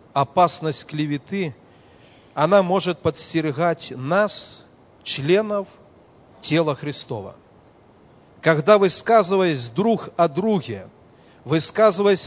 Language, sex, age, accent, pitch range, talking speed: Russian, male, 40-59, native, 135-175 Hz, 75 wpm